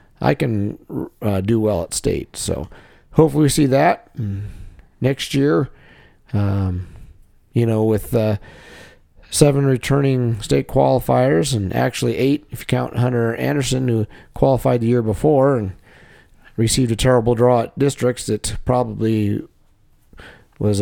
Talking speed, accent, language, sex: 135 wpm, American, English, male